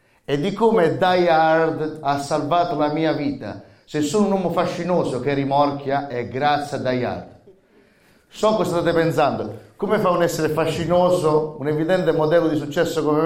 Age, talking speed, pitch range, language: 30-49, 170 wpm, 130-170 Hz, Italian